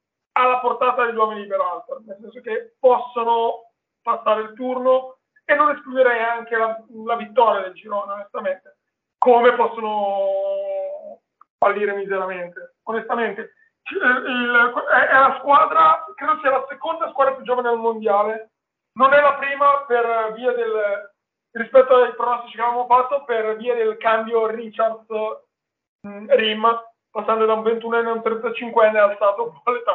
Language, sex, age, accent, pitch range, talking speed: Italian, male, 30-49, native, 215-255 Hz, 145 wpm